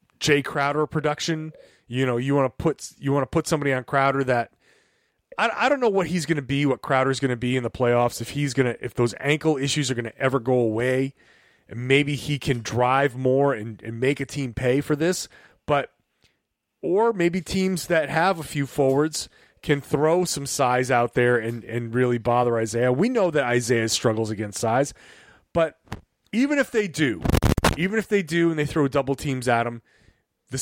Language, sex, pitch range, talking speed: English, male, 130-155 Hz, 210 wpm